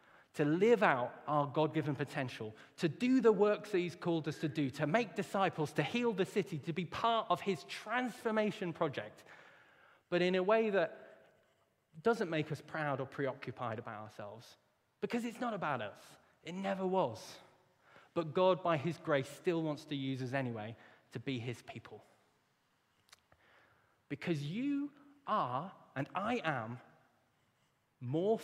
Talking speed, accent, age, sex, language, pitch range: 155 wpm, British, 20-39, male, English, 135-190 Hz